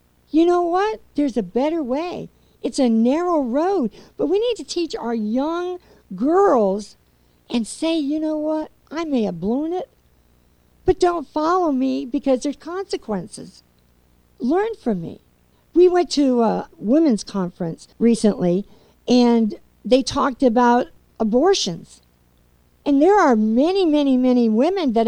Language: English